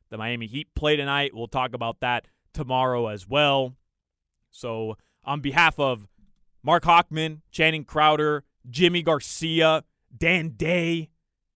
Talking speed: 125 wpm